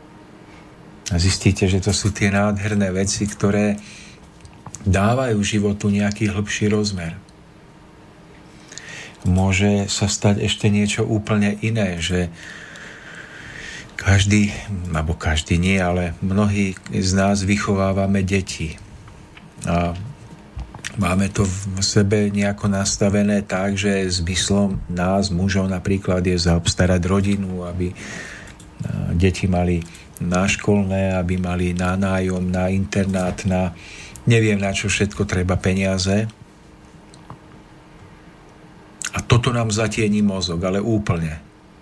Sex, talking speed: male, 105 wpm